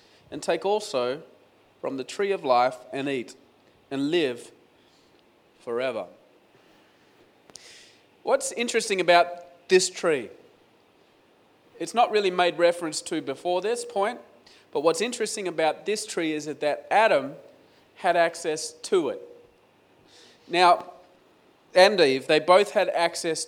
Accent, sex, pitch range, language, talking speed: Australian, male, 155-215 Hz, English, 120 wpm